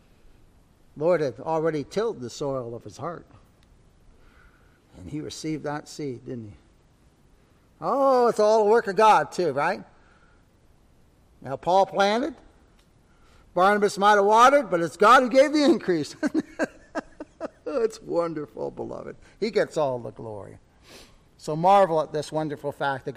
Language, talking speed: English, 140 wpm